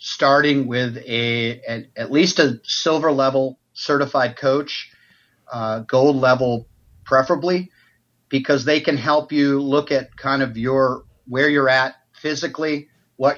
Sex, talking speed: male, 125 wpm